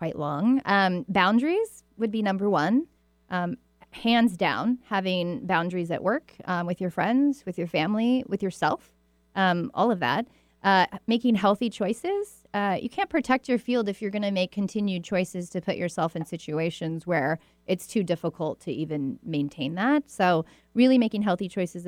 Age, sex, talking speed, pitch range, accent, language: 30-49, female, 175 wpm, 175-235 Hz, American, English